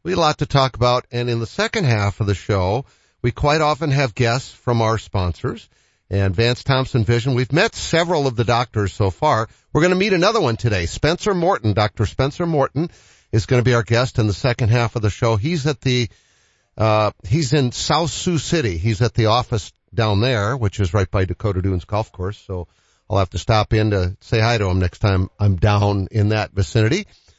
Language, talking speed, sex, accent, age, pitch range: English, 220 wpm, male, American, 50-69, 100-130 Hz